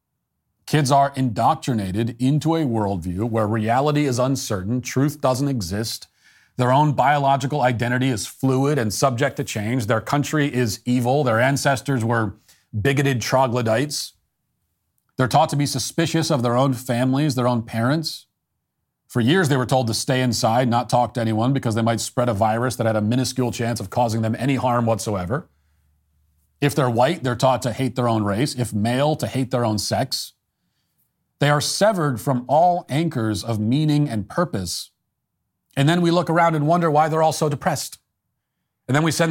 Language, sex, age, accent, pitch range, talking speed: English, male, 40-59, American, 115-145 Hz, 175 wpm